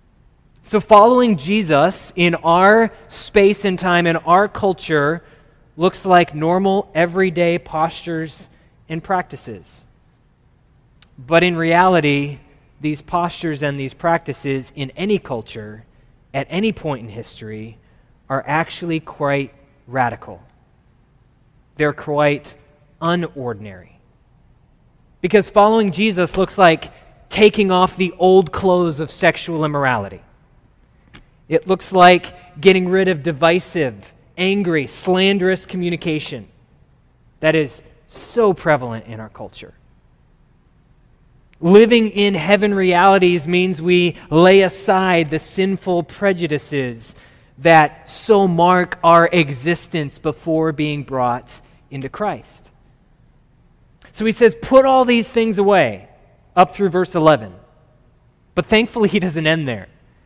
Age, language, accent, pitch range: 20-39, English, American, 140-185 Hz